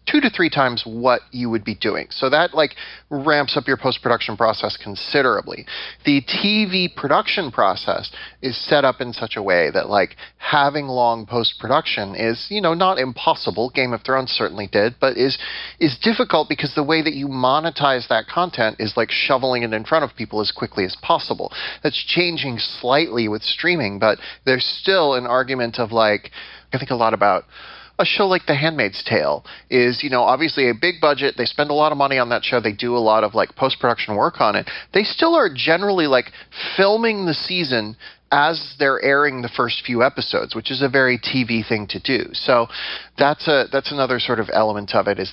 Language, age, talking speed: English, 30-49, 200 wpm